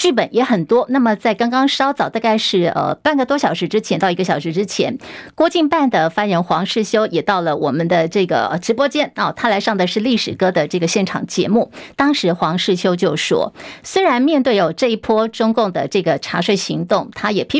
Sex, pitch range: female, 190-255 Hz